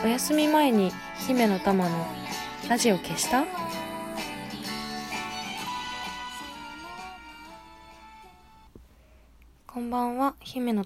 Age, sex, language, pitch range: 20-39, female, Japanese, 165-225 Hz